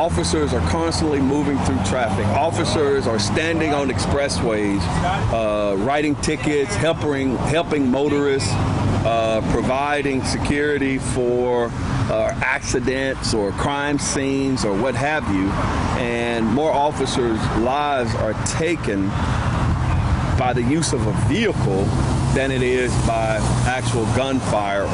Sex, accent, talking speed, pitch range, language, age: male, American, 115 wpm, 105-135 Hz, English, 50-69